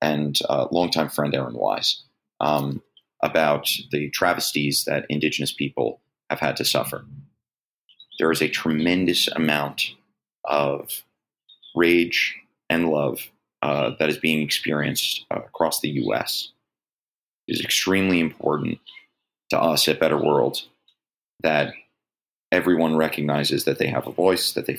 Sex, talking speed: male, 130 wpm